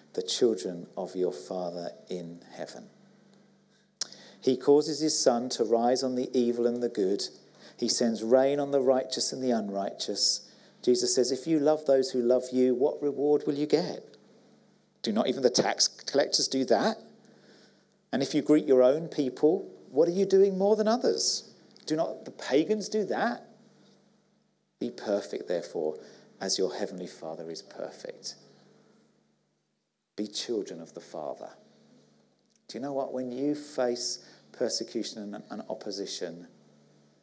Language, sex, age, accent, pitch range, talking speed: English, male, 40-59, British, 105-150 Hz, 150 wpm